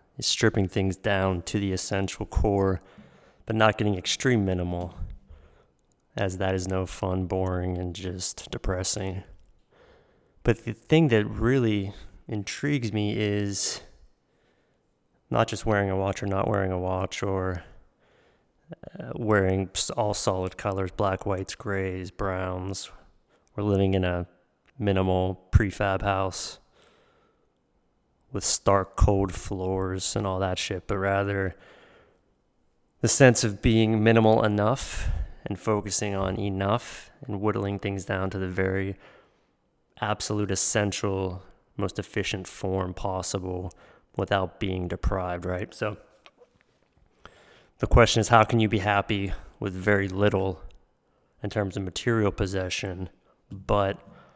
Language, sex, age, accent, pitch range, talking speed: English, male, 20-39, American, 95-105 Hz, 125 wpm